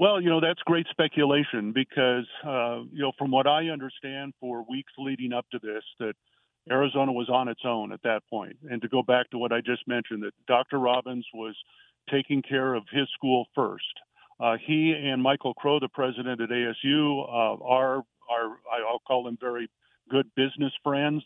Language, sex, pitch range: English, male, 120-140 Hz